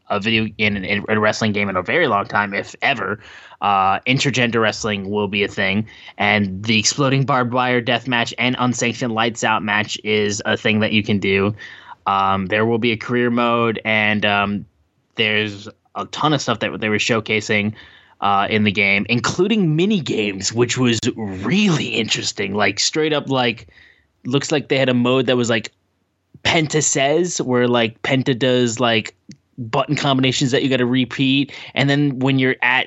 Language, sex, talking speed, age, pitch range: English, male, 180 wpm, 20-39, 105-130 Hz